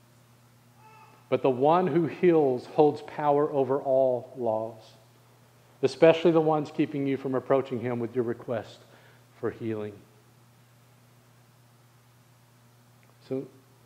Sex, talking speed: male, 105 wpm